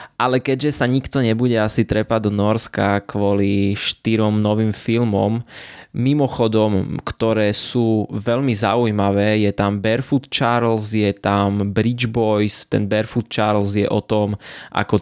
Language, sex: Slovak, male